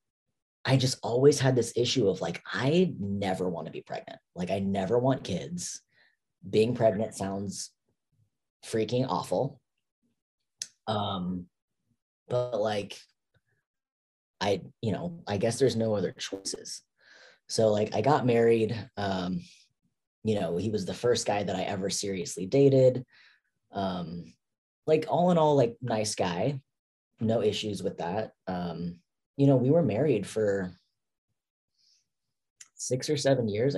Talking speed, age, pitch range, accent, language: 135 wpm, 30-49, 95-130 Hz, American, English